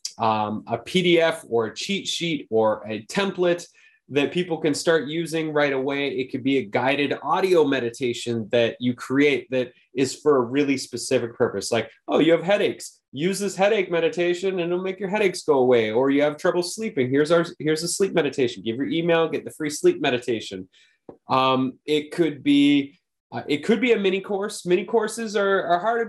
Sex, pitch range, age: male, 115-165 Hz, 20-39